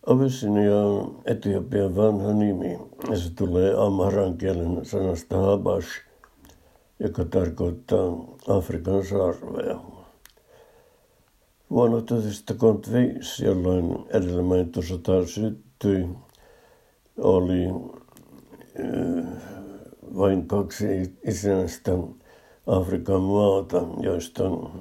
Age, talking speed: 60-79, 75 wpm